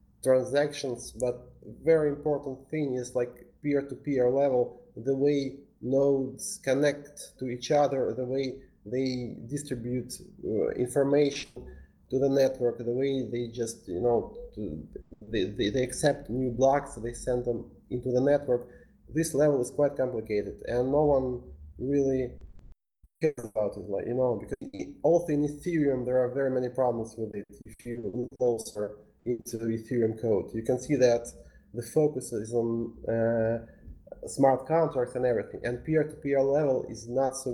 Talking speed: 155 wpm